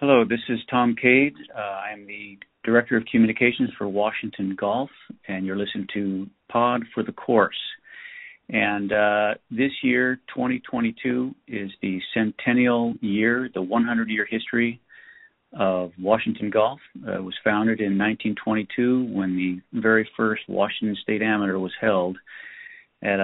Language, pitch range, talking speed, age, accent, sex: English, 100-120 Hz, 135 wpm, 40-59, American, male